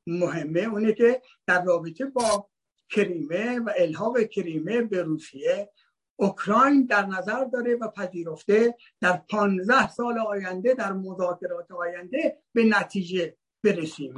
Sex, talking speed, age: male, 120 wpm, 60-79